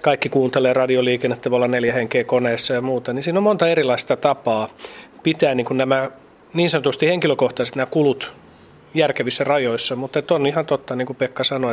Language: Finnish